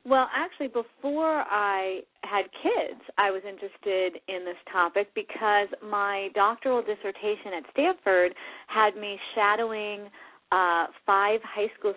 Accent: American